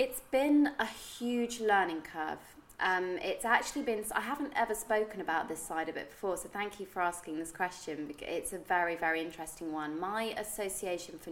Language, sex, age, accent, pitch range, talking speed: English, female, 20-39, British, 160-185 Hz, 190 wpm